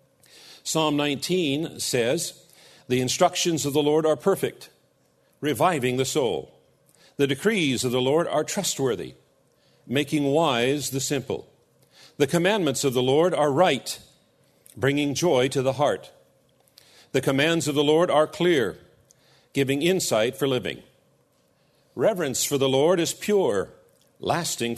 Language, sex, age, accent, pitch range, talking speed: English, male, 50-69, American, 125-160 Hz, 130 wpm